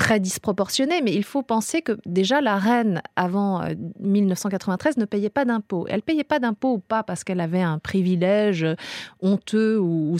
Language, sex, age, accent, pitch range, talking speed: French, female, 30-49, French, 185-230 Hz, 170 wpm